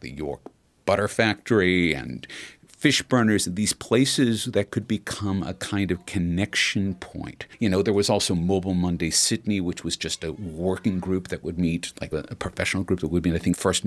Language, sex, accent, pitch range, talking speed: English, male, American, 90-120 Hz, 195 wpm